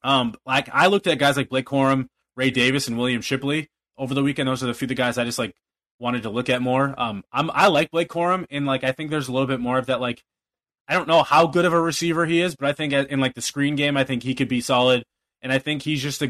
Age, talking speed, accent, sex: 20-39, 290 wpm, American, male